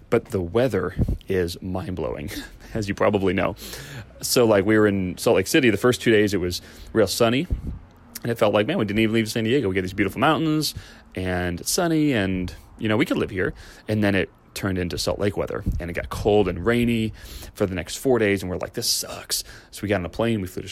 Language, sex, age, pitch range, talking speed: English, male, 30-49, 90-110 Hz, 240 wpm